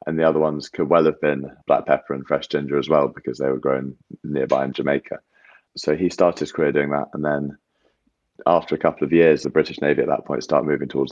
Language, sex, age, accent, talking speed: English, male, 30-49, British, 245 wpm